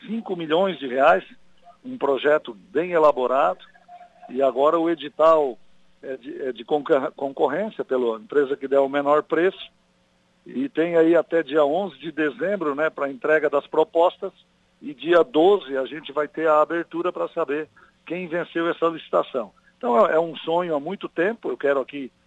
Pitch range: 130-165 Hz